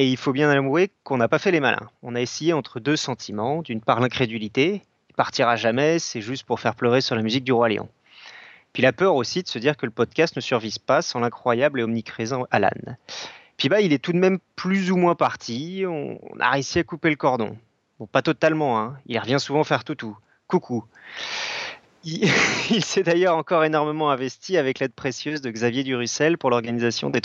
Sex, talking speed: male, 210 wpm